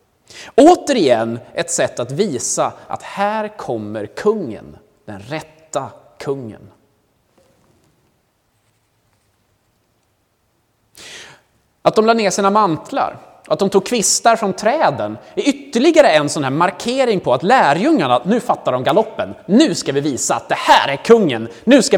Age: 30-49